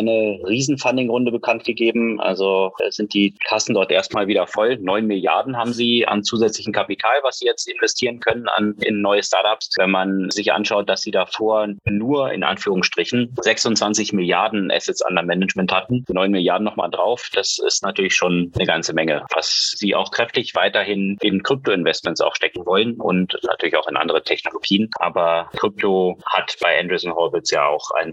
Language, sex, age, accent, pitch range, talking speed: German, male, 30-49, German, 95-115 Hz, 175 wpm